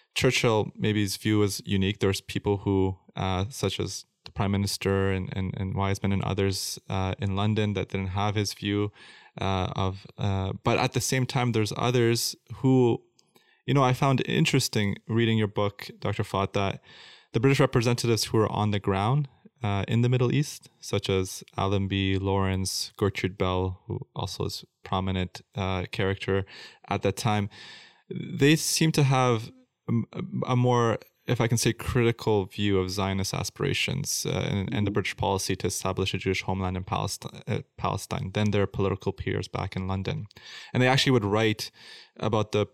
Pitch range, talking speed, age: 95-120 Hz, 175 wpm, 20-39